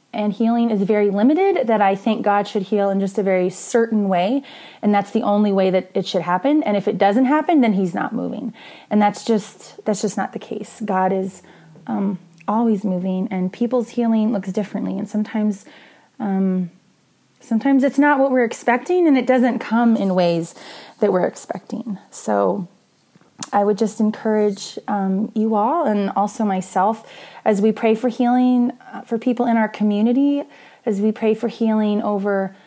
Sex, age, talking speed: female, 20-39, 180 wpm